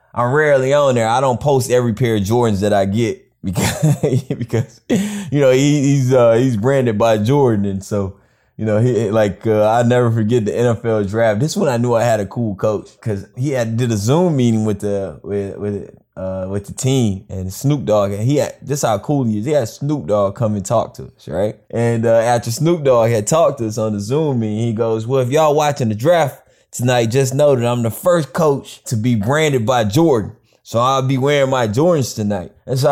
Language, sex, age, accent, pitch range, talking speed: English, male, 20-39, American, 105-145 Hz, 230 wpm